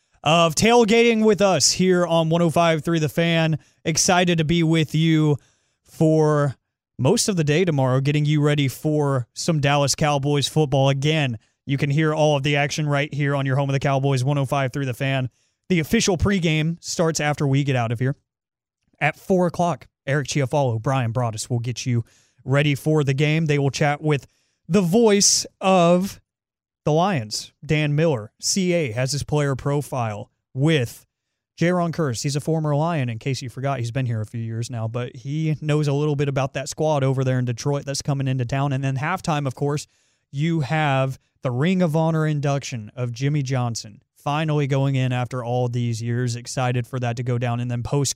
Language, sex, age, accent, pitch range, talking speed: English, male, 30-49, American, 125-155 Hz, 195 wpm